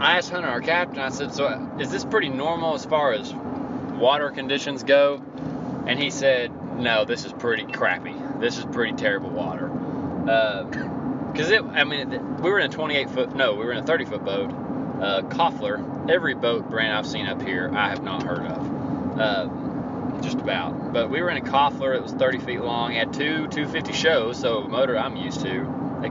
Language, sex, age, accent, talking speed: English, male, 20-39, American, 210 wpm